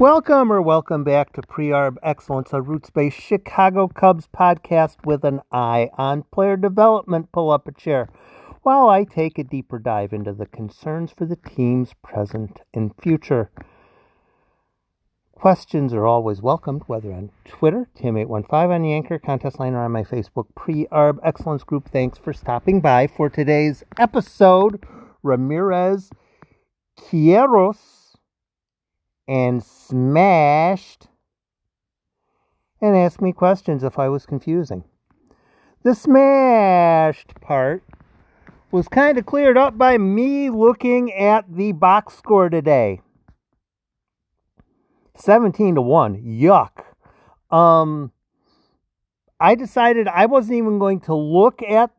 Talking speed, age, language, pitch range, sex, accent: 120 wpm, 50-69, English, 135-195 Hz, male, American